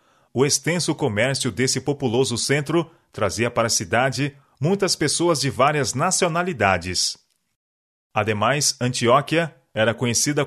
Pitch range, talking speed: 115-160 Hz, 110 wpm